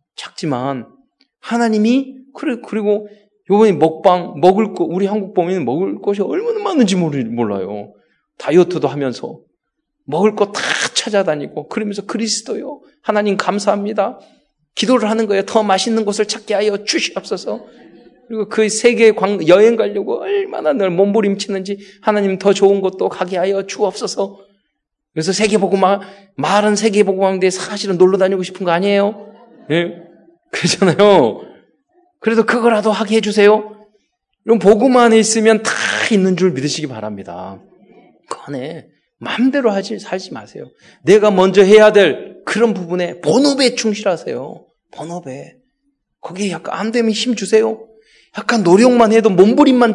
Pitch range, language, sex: 185-225 Hz, Korean, male